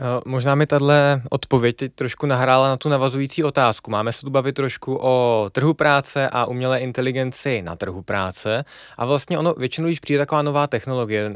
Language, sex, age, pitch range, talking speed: Czech, male, 20-39, 110-135 Hz, 175 wpm